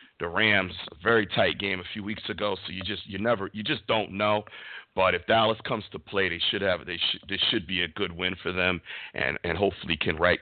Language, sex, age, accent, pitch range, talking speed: English, male, 50-69, American, 85-105 Hz, 250 wpm